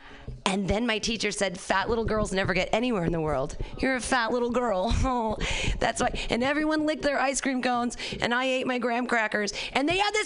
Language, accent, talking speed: English, American, 230 wpm